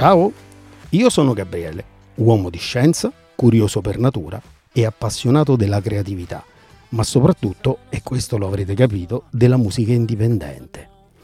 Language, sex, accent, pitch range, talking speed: Italian, male, native, 105-130 Hz, 130 wpm